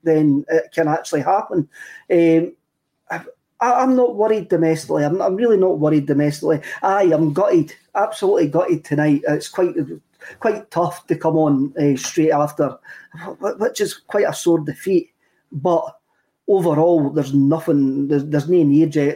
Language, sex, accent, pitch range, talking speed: English, male, British, 150-175 Hz, 140 wpm